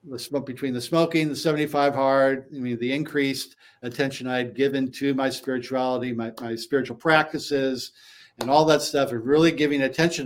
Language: English